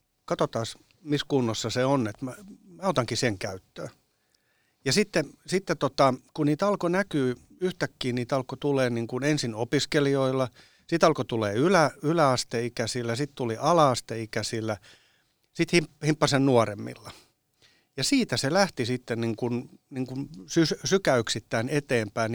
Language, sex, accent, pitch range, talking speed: Finnish, male, native, 115-145 Hz, 130 wpm